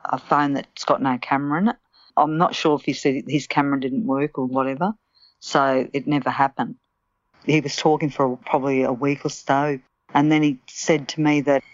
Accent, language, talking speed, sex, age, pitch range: Australian, English, 205 wpm, female, 50-69, 140-155 Hz